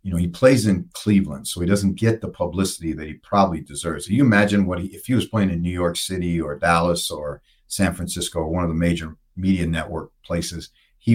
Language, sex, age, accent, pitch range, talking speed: English, male, 50-69, American, 85-100 Hz, 230 wpm